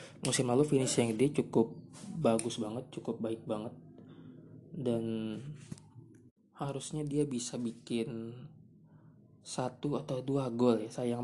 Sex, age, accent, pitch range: male, 20-39, native, 115-140 Hz